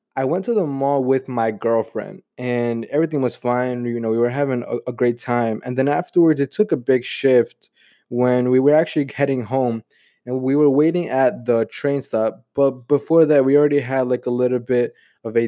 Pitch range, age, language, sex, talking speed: 120-145 Hz, 20-39, English, male, 210 wpm